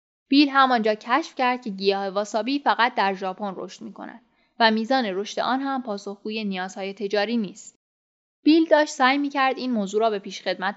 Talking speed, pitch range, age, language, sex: 165 wpm, 200-250 Hz, 10-29, Persian, female